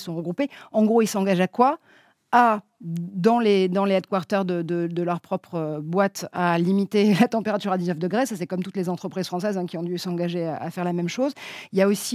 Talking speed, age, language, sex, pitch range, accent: 240 wpm, 40-59, French, female, 180-225 Hz, French